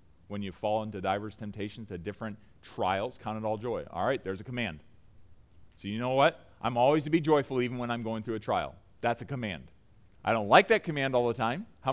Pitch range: 95-150 Hz